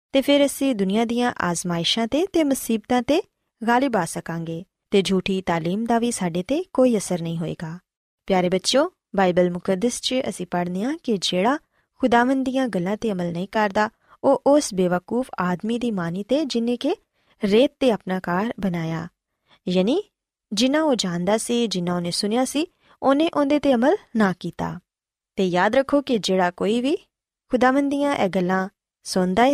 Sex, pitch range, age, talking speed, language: female, 180-260 Hz, 20-39, 140 wpm, Punjabi